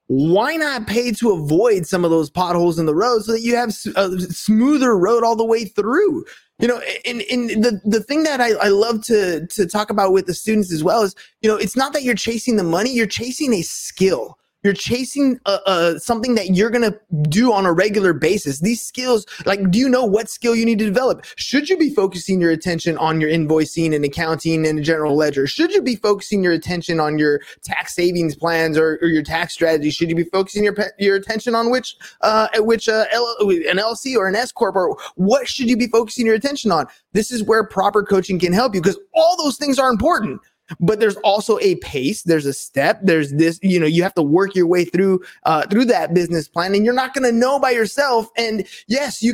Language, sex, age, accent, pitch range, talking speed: English, male, 20-39, American, 175-235 Hz, 230 wpm